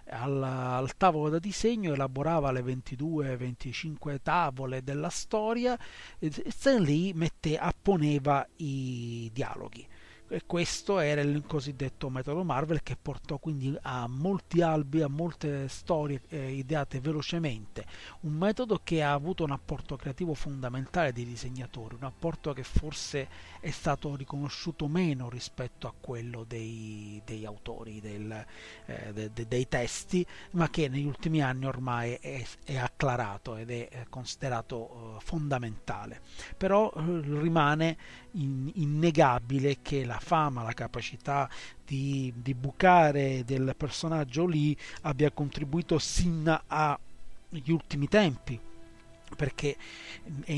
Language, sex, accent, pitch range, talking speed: Italian, male, native, 125-160 Hz, 120 wpm